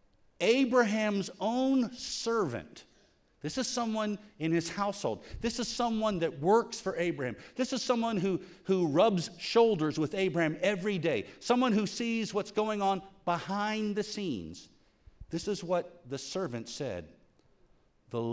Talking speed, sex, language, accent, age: 140 wpm, male, English, American, 50-69